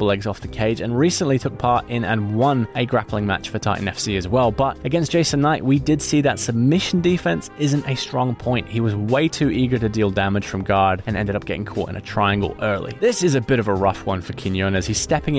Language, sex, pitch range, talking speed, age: English, male, 105-140 Hz, 250 wpm, 20-39